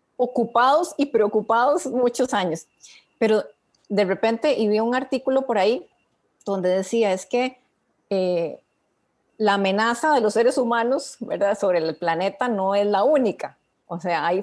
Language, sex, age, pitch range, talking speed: Spanish, female, 30-49, 205-265 Hz, 150 wpm